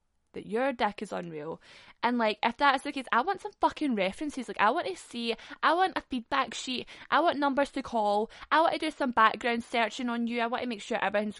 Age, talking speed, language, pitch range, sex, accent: 10-29, 245 wpm, English, 190-240 Hz, female, British